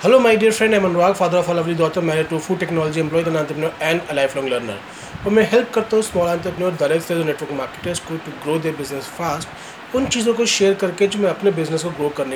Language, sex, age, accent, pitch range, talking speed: Hindi, male, 30-49, native, 160-210 Hz, 230 wpm